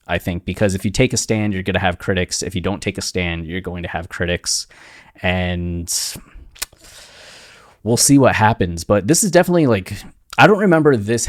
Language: English